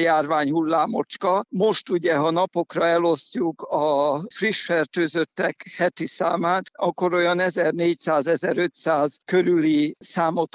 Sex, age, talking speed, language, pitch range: male, 60-79, 90 wpm, Hungarian, 155-180 Hz